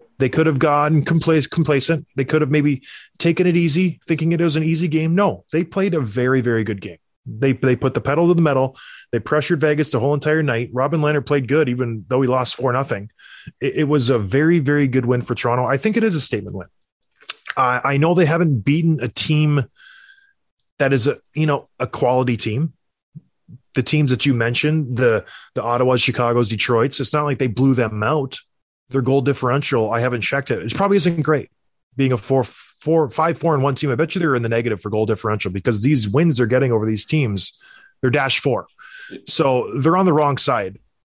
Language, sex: English, male